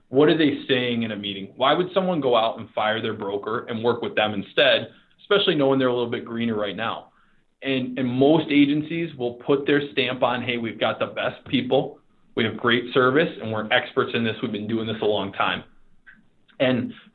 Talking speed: 215 wpm